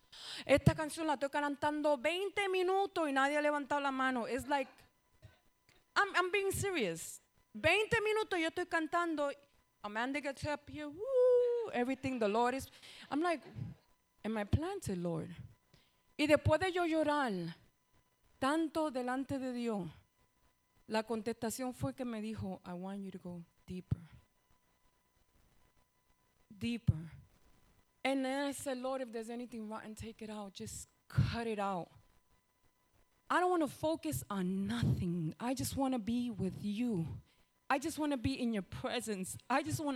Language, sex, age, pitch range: English, female, 20-39, 210-305 Hz